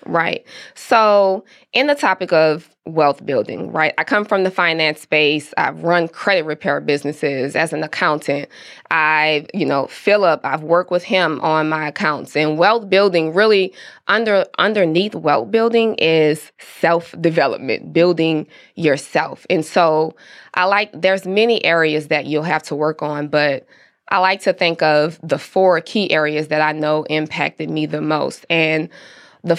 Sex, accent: female, American